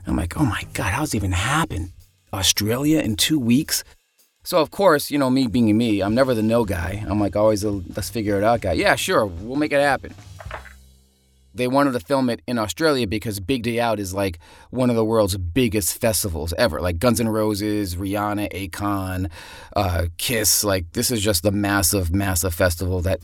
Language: English